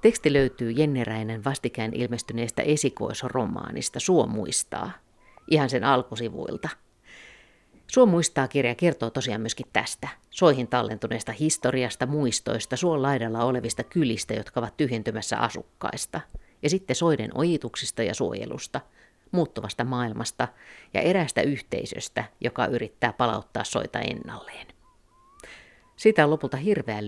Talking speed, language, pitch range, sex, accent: 105 wpm, Finnish, 115-145 Hz, female, native